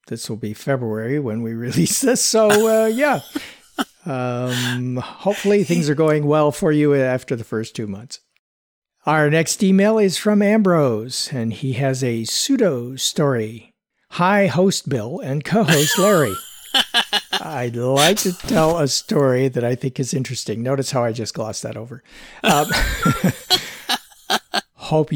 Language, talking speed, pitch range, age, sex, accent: English, 150 wpm, 125-170 Hz, 50-69, male, American